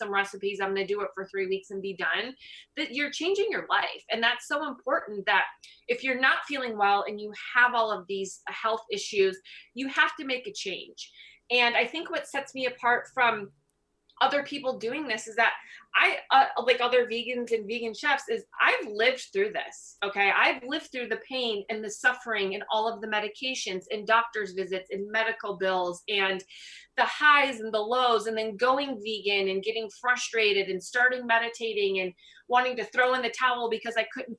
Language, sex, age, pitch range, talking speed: English, female, 20-39, 200-250 Hz, 200 wpm